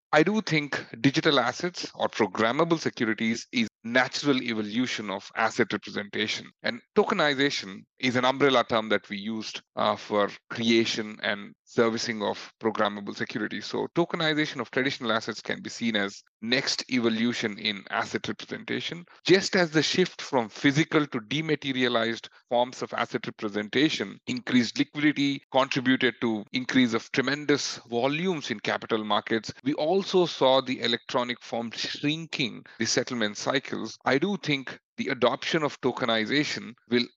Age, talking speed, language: 40-59, 140 wpm, English